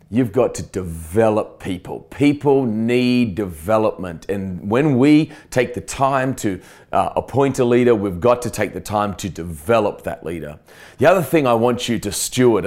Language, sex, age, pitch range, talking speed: English, male, 30-49, 105-130 Hz, 175 wpm